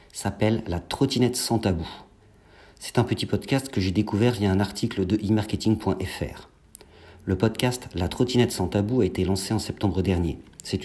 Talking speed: 165 wpm